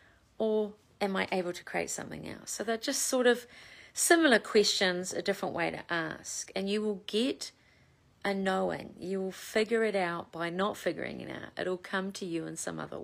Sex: female